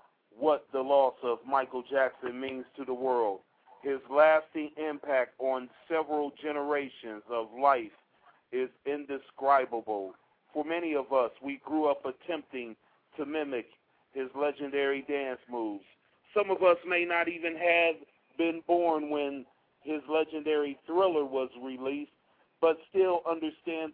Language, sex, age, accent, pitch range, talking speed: English, male, 40-59, American, 135-170 Hz, 130 wpm